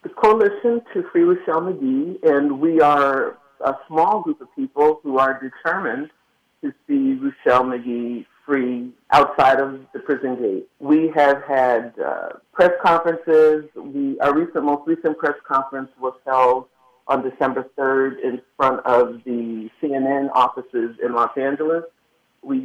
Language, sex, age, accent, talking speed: English, male, 50-69, American, 145 wpm